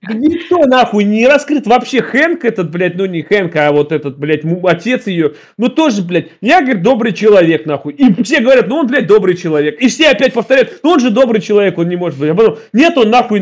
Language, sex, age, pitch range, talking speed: Russian, male, 30-49, 155-220 Hz, 225 wpm